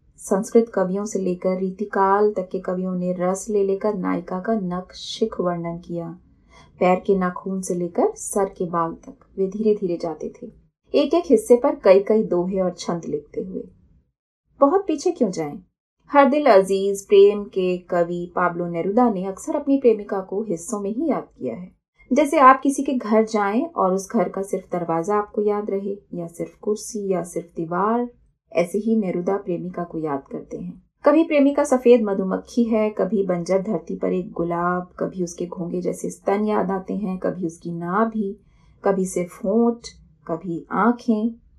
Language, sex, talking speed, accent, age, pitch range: Hindi, female, 175 wpm, native, 30-49, 180-225 Hz